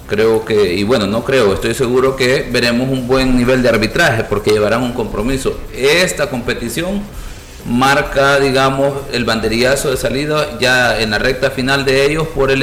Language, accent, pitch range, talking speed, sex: Spanish, Venezuelan, 115-140 Hz, 170 wpm, male